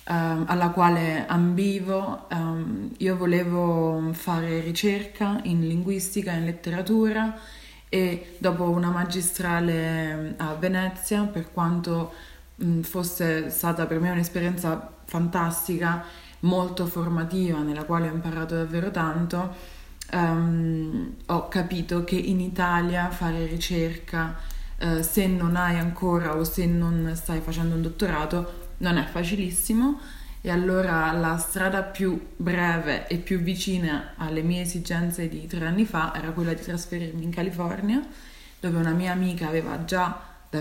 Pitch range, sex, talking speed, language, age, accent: 165-185 Hz, female, 125 wpm, Italian, 20-39, native